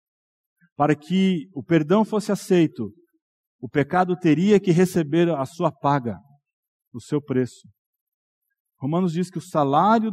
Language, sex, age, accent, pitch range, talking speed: Portuguese, male, 50-69, Brazilian, 145-215 Hz, 130 wpm